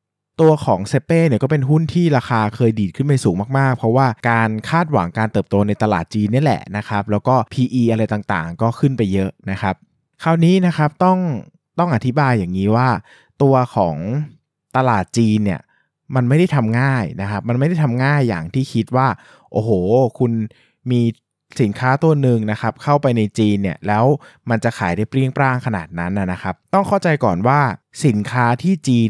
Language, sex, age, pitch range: Thai, male, 20-39, 105-140 Hz